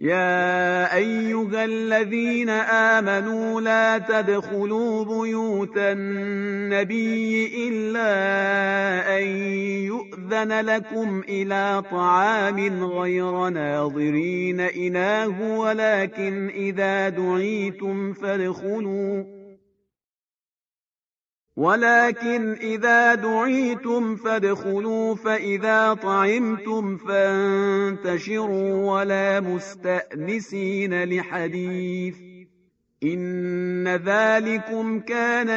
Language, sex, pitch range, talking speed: Persian, male, 195-225 Hz, 55 wpm